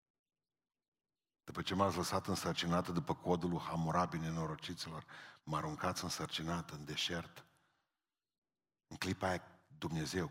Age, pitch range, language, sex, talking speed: 50-69, 85-135 Hz, Romanian, male, 105 wpm